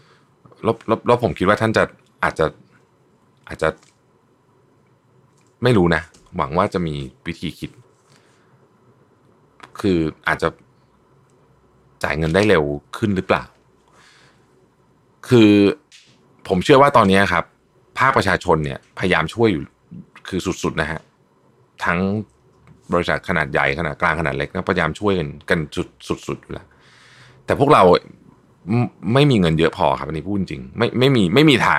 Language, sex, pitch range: Thai, male, 80-115 Hz